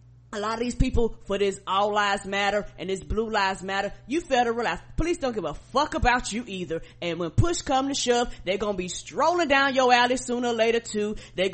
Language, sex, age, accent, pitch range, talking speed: English, female, 20-39, American, 190-250 Hz, 225 wpm